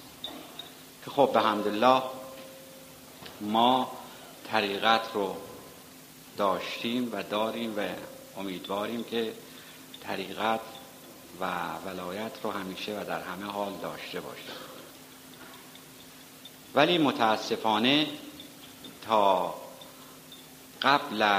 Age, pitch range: 50-69, 100-135 Hz